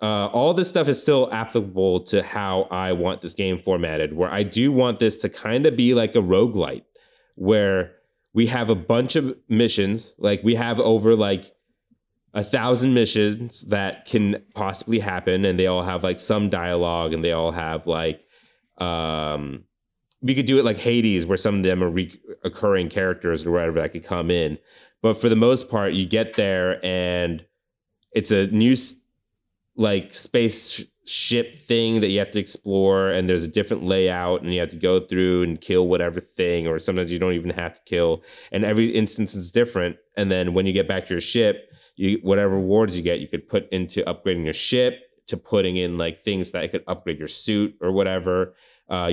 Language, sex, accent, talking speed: English, male, American, 195 wpm